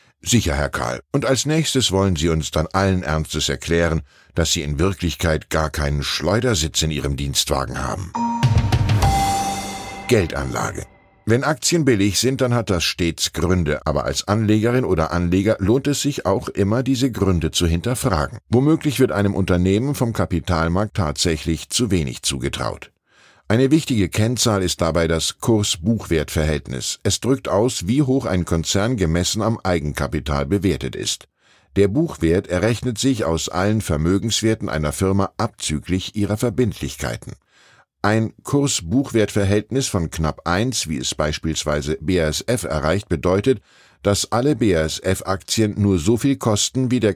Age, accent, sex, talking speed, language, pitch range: 10-29, German, male, 140 wpm, German, 80-115 Hz